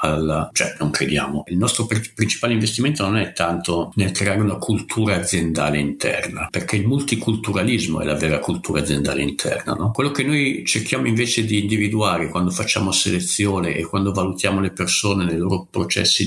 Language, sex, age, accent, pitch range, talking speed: Italian, male, 50-69, native, 85-105 Hz, 170 wpm